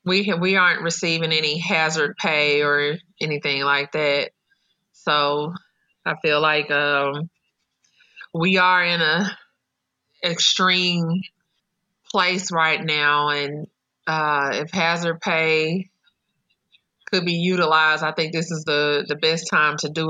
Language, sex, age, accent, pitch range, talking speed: English, female, 30-49, American, 150-175 Hz, 125 wpm